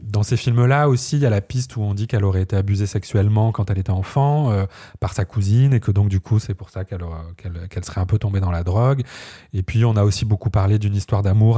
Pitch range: 95-115 Hz